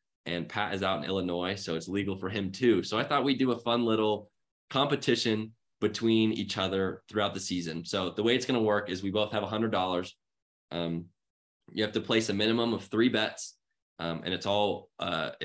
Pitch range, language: 90-110 Hz, English